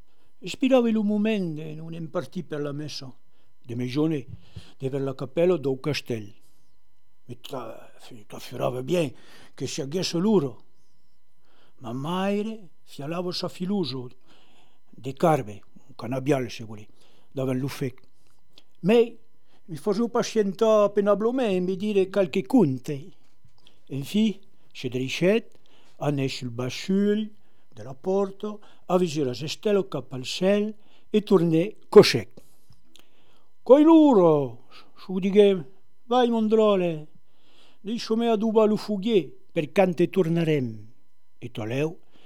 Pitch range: 130-195 Hz